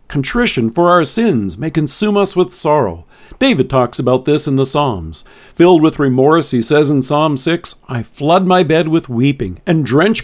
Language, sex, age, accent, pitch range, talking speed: English, male, 50-69, American, 125-180 Hz, 190 wpm